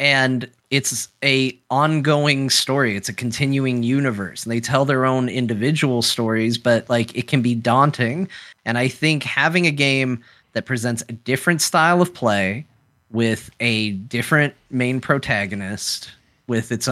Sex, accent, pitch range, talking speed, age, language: male, American, 110-135 Hz, 150 wpm, 30-49, English